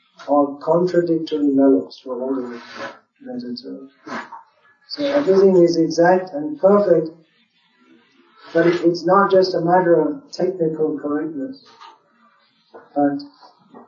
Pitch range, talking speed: 145-185 Hz, 95 wpm